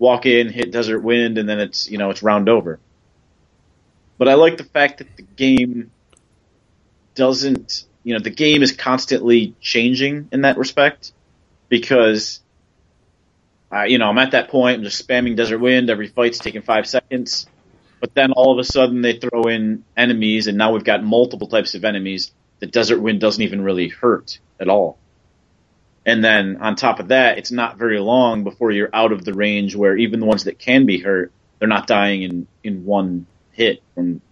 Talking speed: 190 wpm